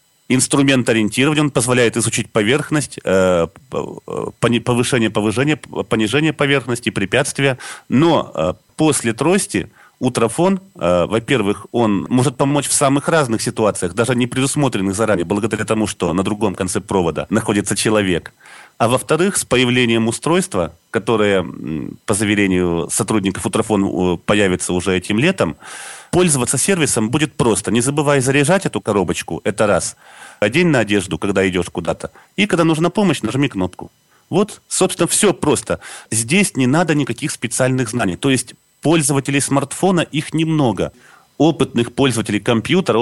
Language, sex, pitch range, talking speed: Russian, male, 105-145 Hz, 130 wpm